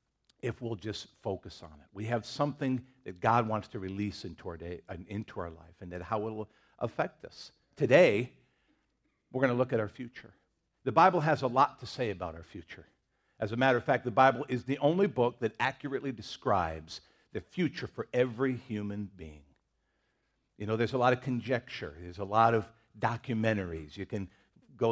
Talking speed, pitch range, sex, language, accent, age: 195 wpm, 105-135 Hz, male, English, American, 50-69